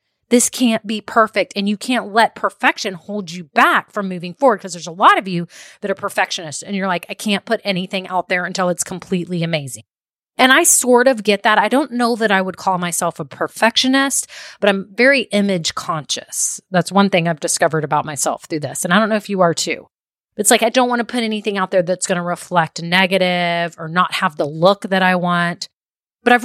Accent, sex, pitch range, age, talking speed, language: American, female, 175-220 Hz, 30-49, 225 wpm, English